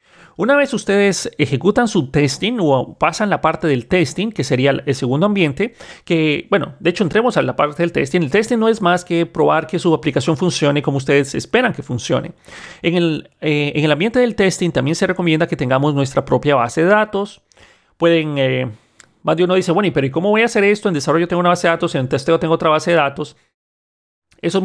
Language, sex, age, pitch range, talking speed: Spanish, male, 40-59, 145-180 Hz, 215 wpm